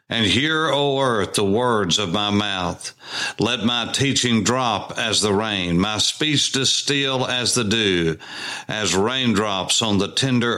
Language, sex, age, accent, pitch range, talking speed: English, male, 60-79, American, 105-130 Hz, 155 wpm